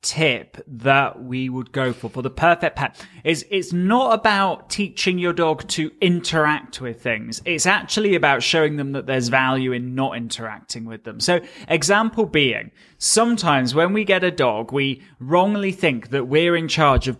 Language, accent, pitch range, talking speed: English, British, 140-185 Hz, 180 wpm